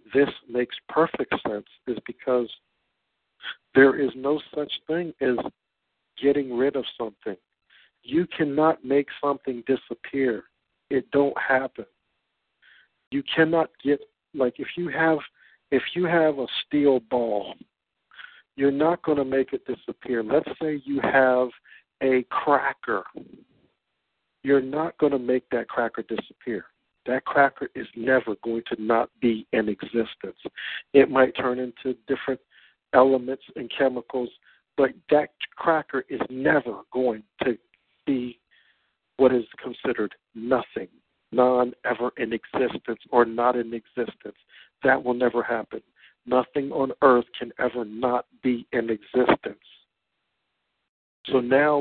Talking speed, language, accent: 125 wpm, English, American